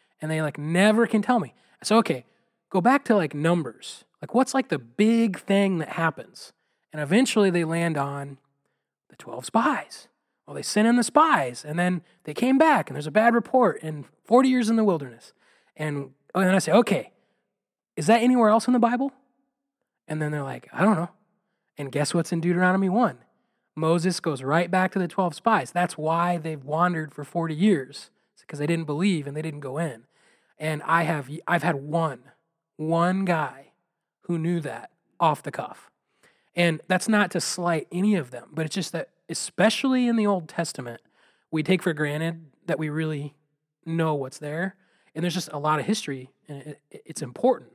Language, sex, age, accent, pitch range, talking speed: English, male, 20-39, American, 150-200 Hz, 195 wpm